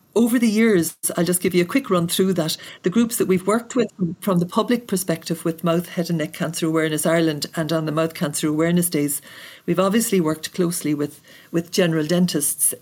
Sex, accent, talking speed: female, Irish, 210 wpm